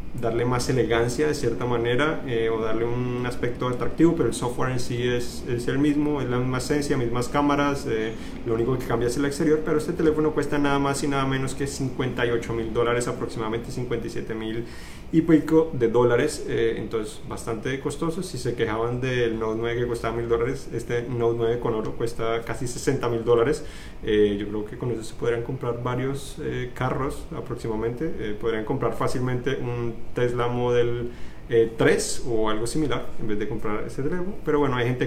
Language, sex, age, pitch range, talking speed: Spanish, male, 30-49, 115-140 Hz, 195 wpm